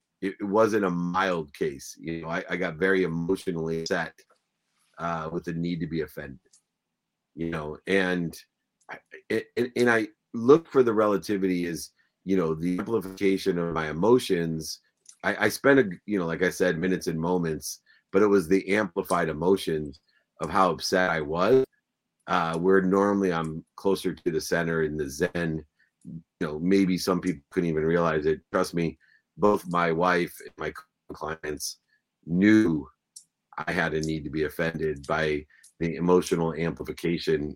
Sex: male